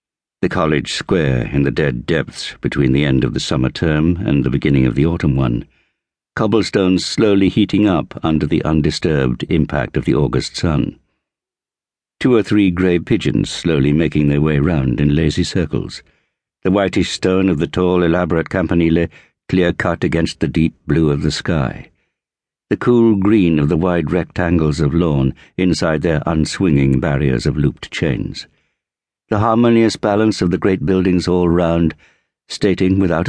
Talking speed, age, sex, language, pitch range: 160 wpm, 60-79, male, English, 75-95 Hz